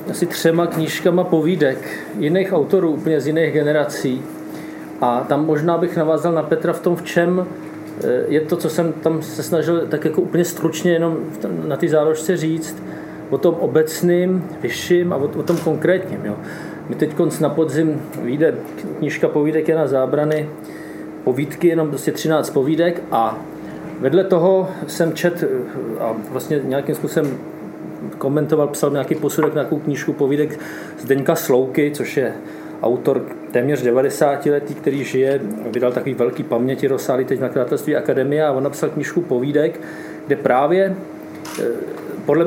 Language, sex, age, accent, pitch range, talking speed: Czech, male, 40-59, native, 150-170 Hz, 150 wpm